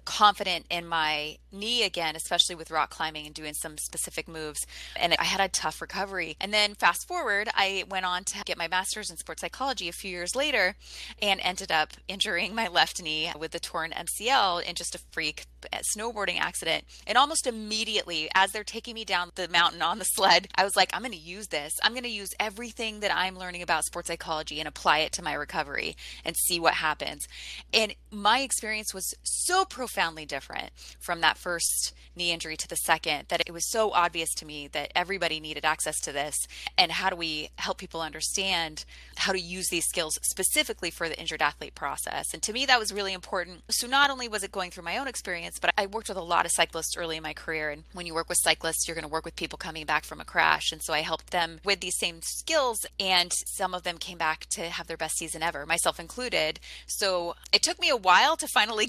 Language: English